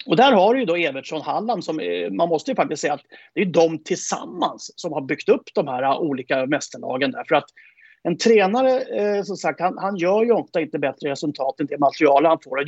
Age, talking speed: 30-49, 220 wpm